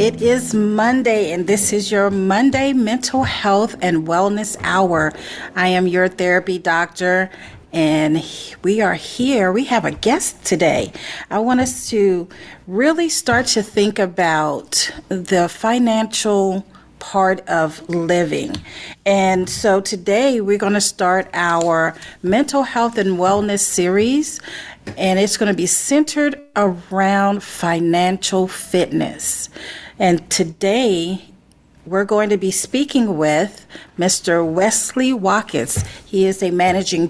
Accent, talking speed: American, 125 wpm